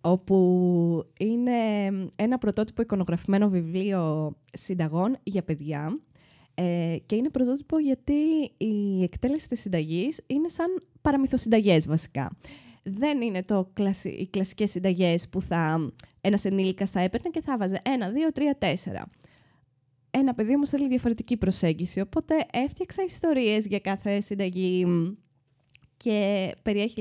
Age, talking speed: 20-39, 120 wpm